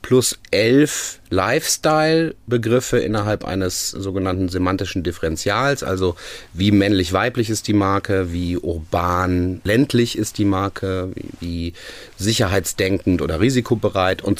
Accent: German